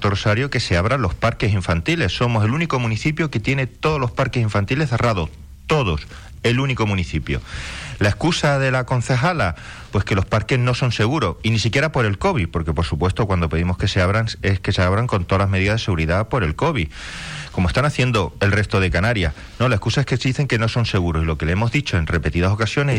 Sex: male